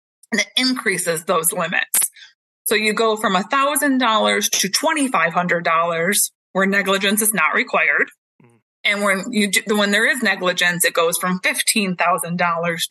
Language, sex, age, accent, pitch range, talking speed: English, female, 20-39, American, 185-235 Hz, 135 wpm